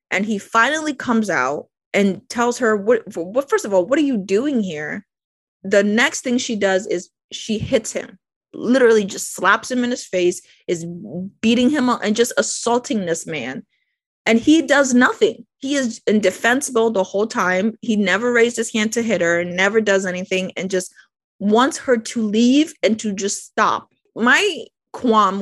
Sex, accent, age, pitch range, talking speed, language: female, American, 30-49, 190-255 Hz, 180 wpm, English